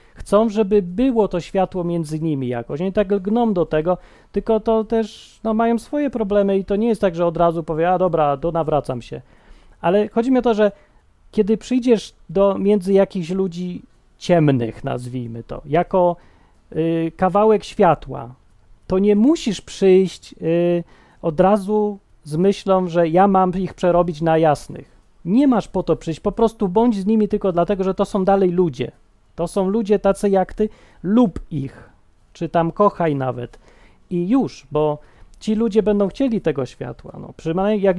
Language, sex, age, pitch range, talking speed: Polish, male, 30-49, 160-210 Hz, 170 wpm